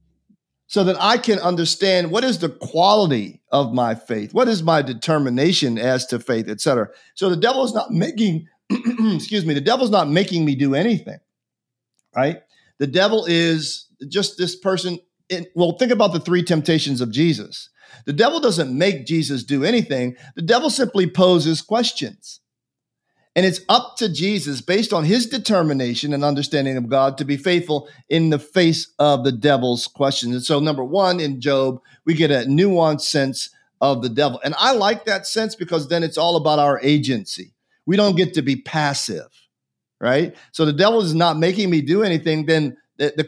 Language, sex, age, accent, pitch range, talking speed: English, male, 50-69, American, 140-185 Hz, 180 wpm